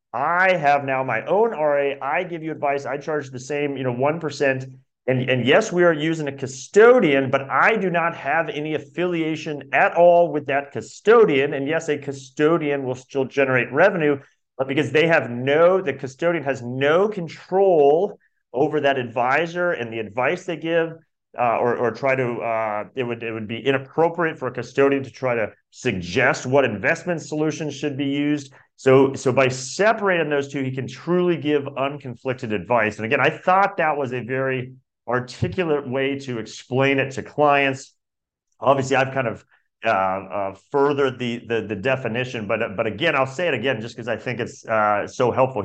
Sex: male